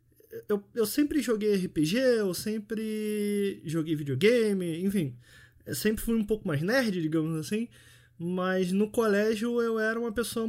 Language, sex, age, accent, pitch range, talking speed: Portuguese, male, 20-39, Brazilian, 155-205 Hz, 150 wpm